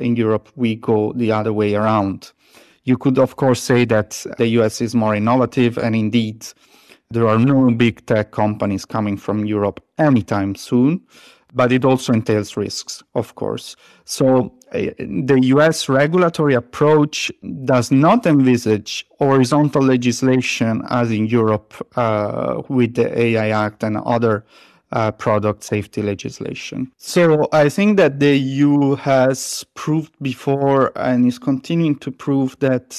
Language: English